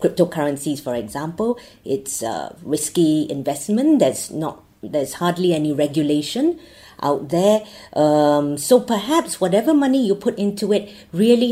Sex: female